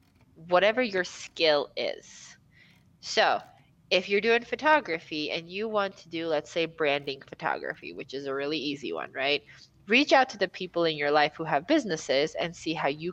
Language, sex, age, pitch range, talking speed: English, female, 20-39, 145-190 Hz, 185 wpm